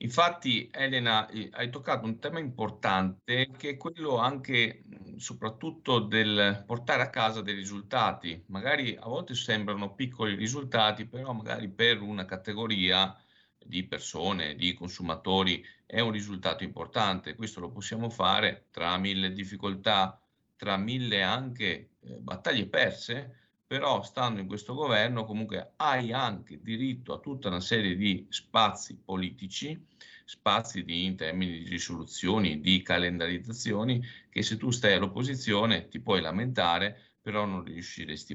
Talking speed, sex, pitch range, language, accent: 130 wpm, male, 90-115 Hz, Italian, native